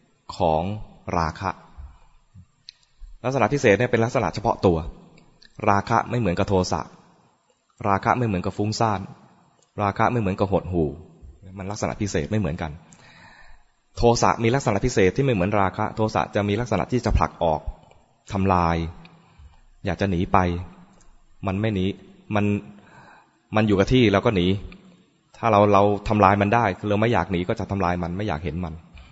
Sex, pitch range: male, 90-110 Hz